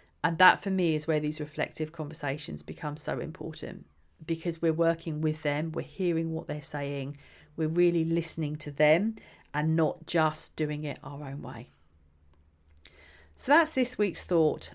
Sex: female